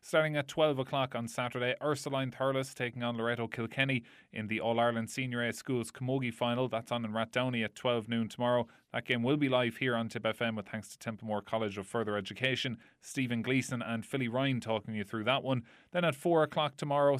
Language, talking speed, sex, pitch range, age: English, 210 wpm, male, 110-130 Hz, 20-39